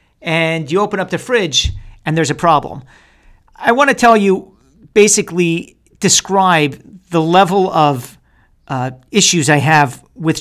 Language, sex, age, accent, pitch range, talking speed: English, male, 40-59, American, 140-185 Hz, 145 wpm